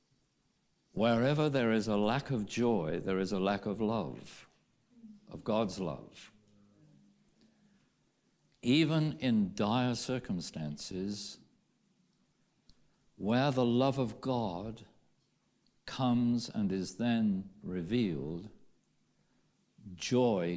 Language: English